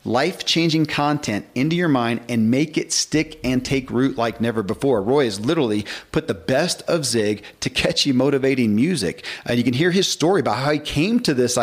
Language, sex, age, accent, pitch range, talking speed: English, male, 40-59, American, 115-140 Hz, 200 wpm